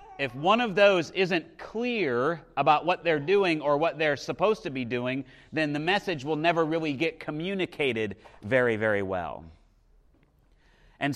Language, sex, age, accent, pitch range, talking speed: English, male, 30-49, American, 135-180 Hz, 155 wpm